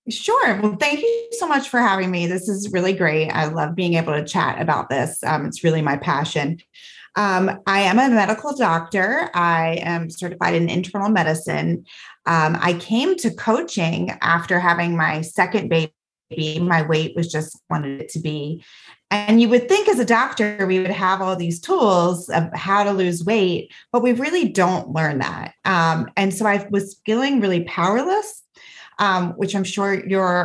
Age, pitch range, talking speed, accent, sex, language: 30-49, 170-215 Hz, 185 wpm, American, female, English